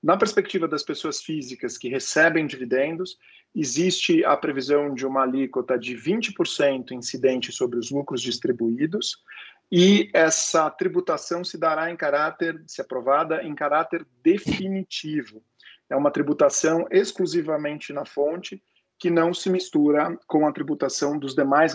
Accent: Brazilian